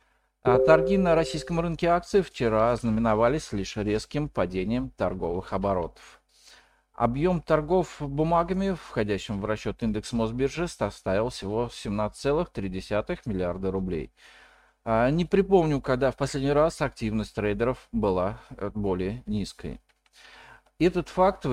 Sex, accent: male, native